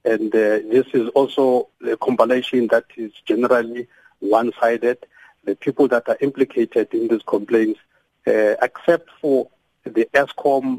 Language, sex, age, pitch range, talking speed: English, male, 50-69, 115-150 Hz, 135 wpm